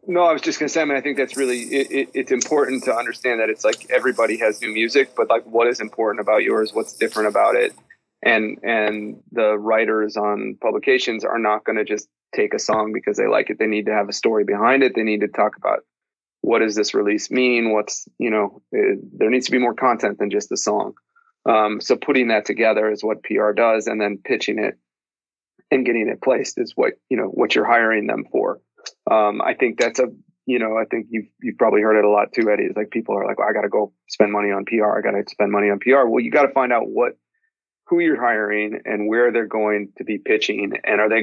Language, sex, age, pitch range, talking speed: English, male, 30-49, 105-160 Hz, 245 wpm